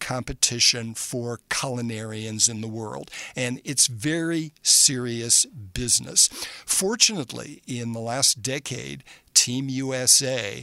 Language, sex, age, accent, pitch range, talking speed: English, male, 60-79, American, 115-140 Hz, 100 wpm